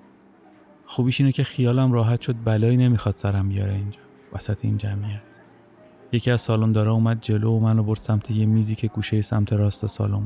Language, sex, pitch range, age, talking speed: Persian, male, 95-110 Hz, 30-49, 175 wpm